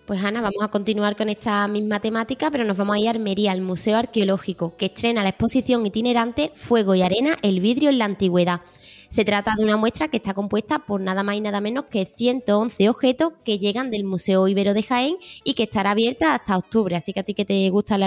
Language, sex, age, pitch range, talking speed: Spanish, female, 20-39, 195-240 Hz, 230 wpm